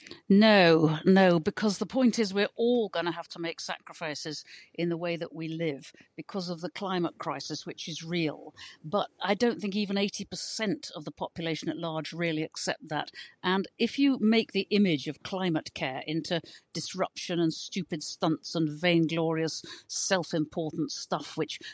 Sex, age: female, 50-69